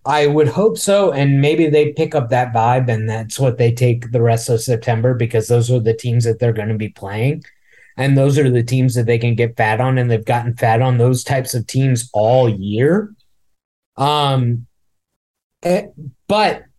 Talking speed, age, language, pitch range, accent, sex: 200 wpm, 20-39, English, 125-150 Hz, American, male